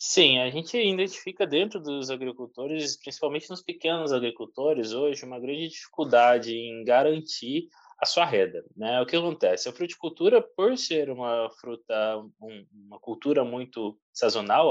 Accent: Brazilian